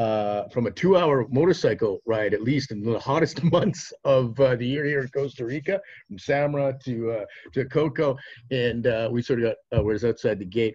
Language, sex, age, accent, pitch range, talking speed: English, male, 50-69, American, 115-160 Hz, 205 wpm